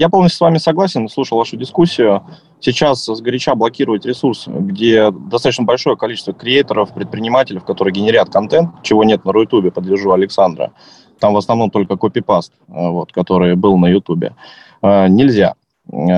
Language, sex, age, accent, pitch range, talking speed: Russian, male, 20-39, native, 95-125 Hz, 140 wpm